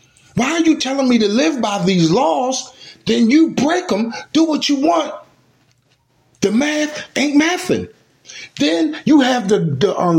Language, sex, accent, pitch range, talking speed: English, male, American, 185-270 Hz, 165 wpm